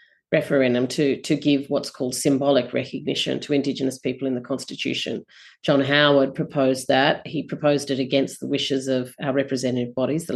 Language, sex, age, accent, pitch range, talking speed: English, female, 30-49, Australian, 135-155 Hz, 170 wpm